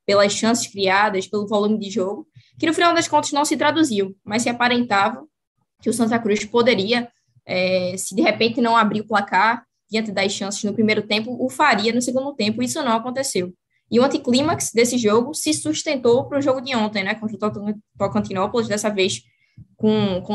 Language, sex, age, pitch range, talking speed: Portuguese, female, 10-29, 190-240 Hz, 190 wpm